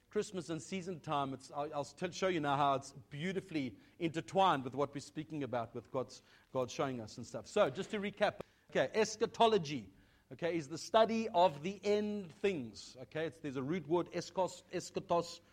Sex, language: male, English